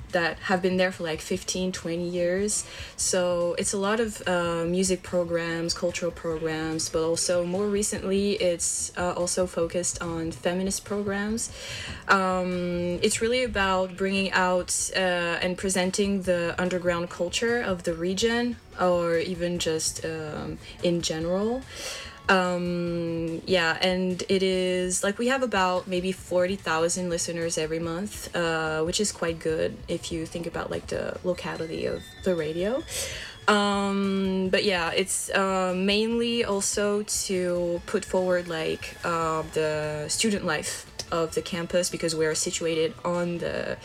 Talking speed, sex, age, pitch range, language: 140 wpm, female, 20-39, 170-190 Hz, French